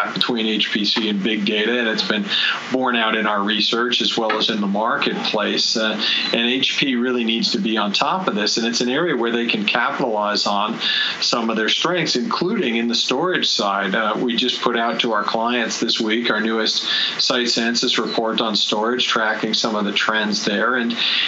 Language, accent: English, American